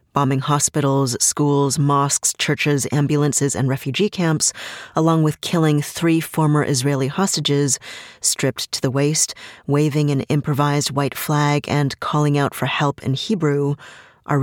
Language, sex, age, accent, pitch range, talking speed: English, female, 30-49, American, 135-150 Hz, 135 wpm